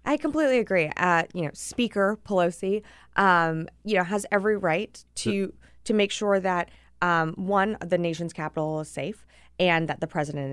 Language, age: English, 20-39